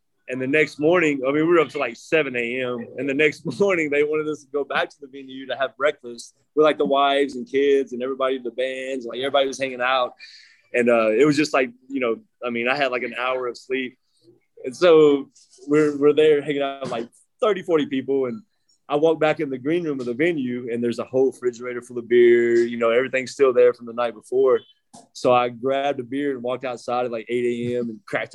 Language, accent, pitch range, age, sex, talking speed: English, American, 125-150 Hz, 20-39, male, 240 wpm